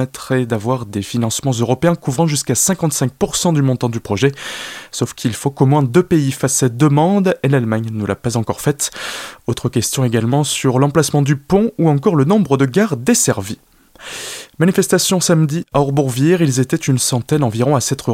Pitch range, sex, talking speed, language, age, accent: 125-165 Hz, male, 175 wpm, French, 20-39, French